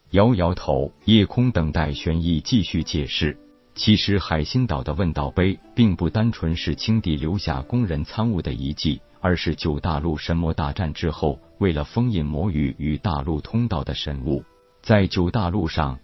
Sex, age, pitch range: male, 50-69, 75-100 Hz